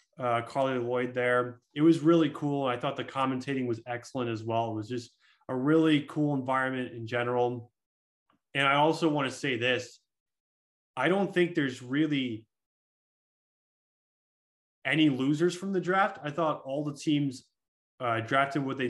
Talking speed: 160 wpm